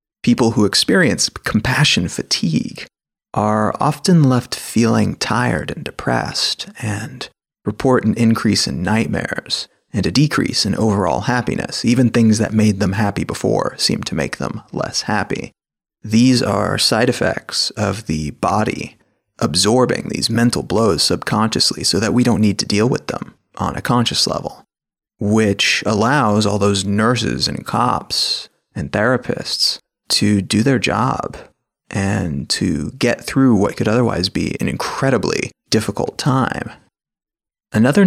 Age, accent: 30-49, American